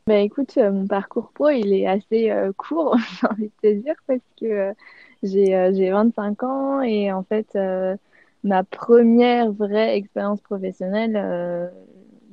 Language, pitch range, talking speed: French, 185-215 Hz, 165 wpm